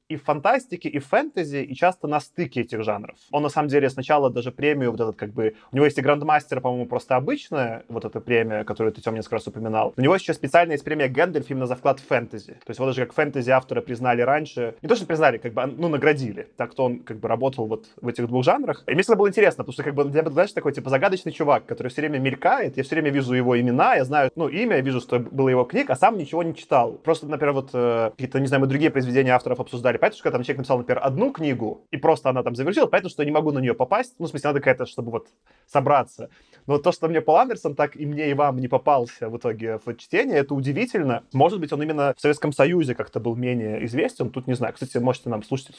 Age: 20-39